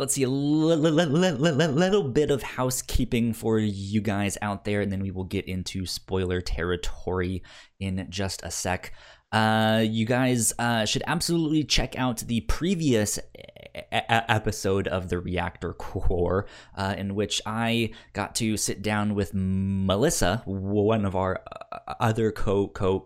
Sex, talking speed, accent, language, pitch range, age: male, 145 wpm, American, English, 95-115 Hz, 20-39